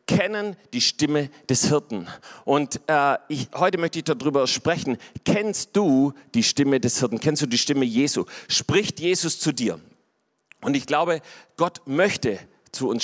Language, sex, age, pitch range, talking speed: German, male, 40-59, 145-185 Hz, 160 wpm